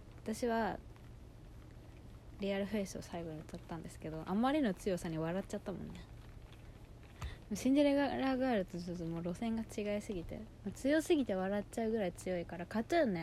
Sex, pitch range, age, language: female, 175-245 Hz, 20-39, Japanese